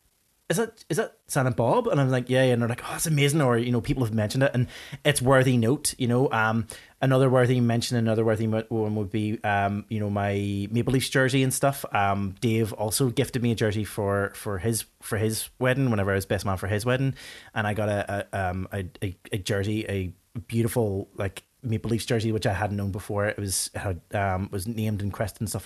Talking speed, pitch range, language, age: 230 wpm, 105-125 Hz, English, 20-39